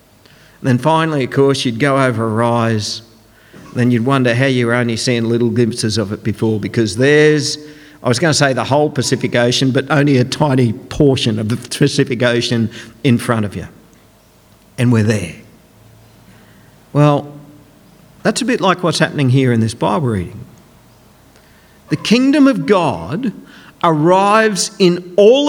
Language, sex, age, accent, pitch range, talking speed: English, male, 50-69, Australian, 125-205 Hz, 160 wpm